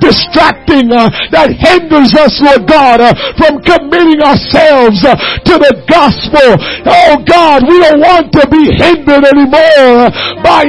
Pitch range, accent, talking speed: 275-335 Hz, American, 125 wpm